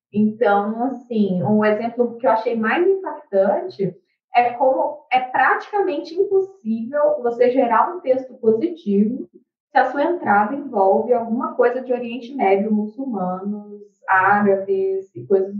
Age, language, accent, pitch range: 20-39, Portuguese, Brazilian, 195-265 Hz